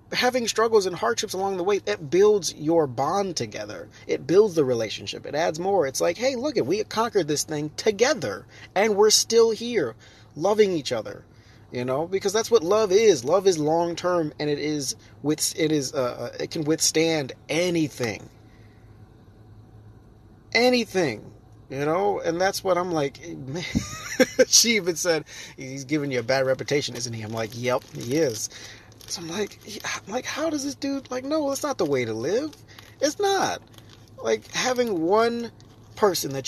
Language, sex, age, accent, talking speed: English, male, 30-49, American, 175 wpm